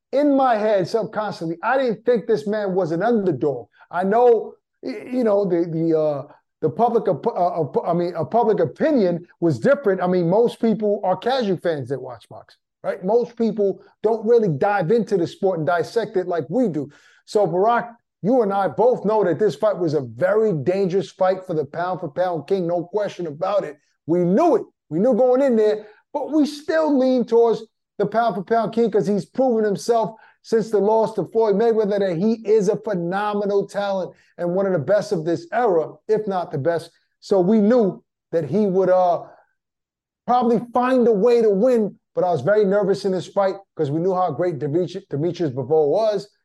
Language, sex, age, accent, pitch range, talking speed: English, male, 30-49, American, 175-230 Hz, 200 wpm